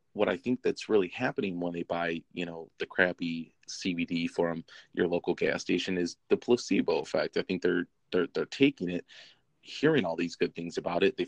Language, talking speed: English, 200 wpm